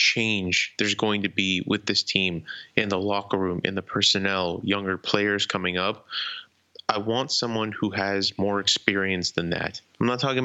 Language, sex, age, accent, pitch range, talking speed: English, male, 20-39, American, 95-105 Hz, 180 wpm